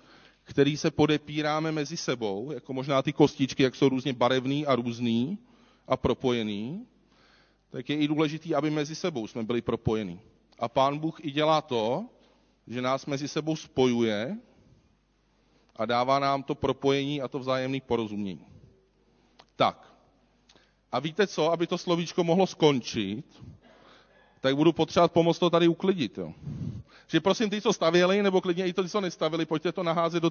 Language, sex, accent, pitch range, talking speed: Czech, male, native, 125-170 Hz, 155 wpm